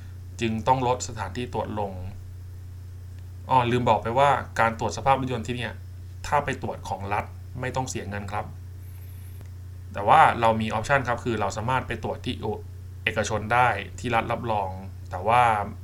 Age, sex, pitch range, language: 20-39, male, 90-115 Hz, Thai